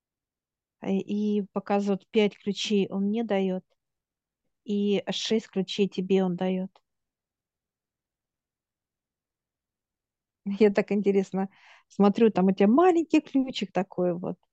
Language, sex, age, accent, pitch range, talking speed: Russian, female, 50-69, native, 190-205 Hz, 100 wpm